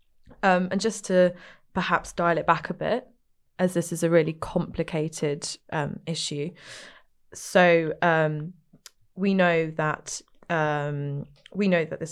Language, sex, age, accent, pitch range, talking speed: English, female, 20-39, British, 160-185 Hz, 140 wpm